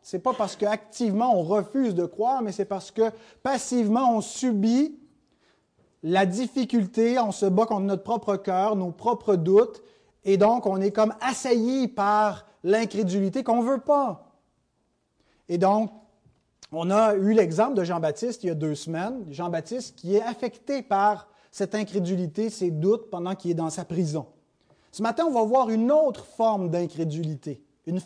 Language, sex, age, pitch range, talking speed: French, male, 30-49, 185-240 Hz, 165 wpm